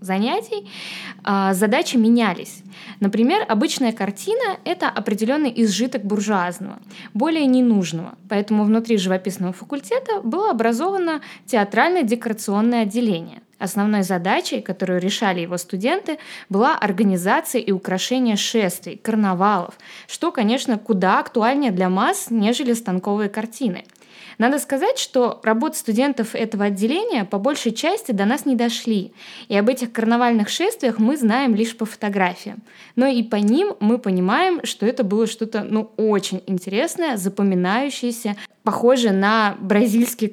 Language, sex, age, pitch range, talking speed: Russian, female, 20-39, 205-250 Hz, 120 wpm